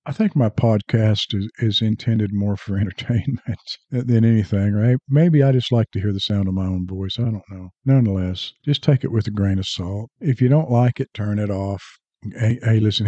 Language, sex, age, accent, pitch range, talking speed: English, male, 50-69, American, 105-130 Hz, 220 wpm